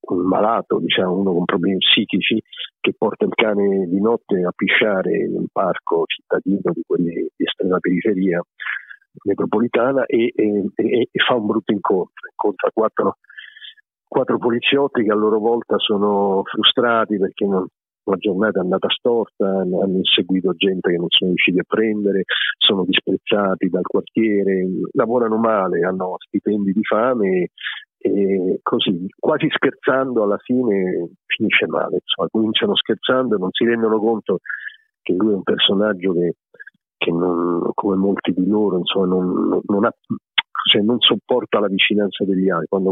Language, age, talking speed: Italian, 50-69, 150 wpm